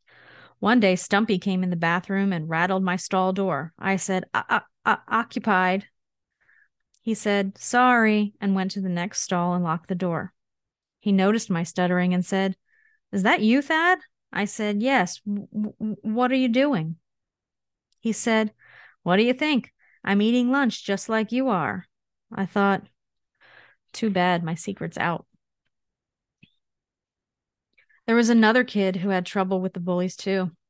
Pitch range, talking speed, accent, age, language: 185-220 Hz, 150 wpm, American, 30-49, English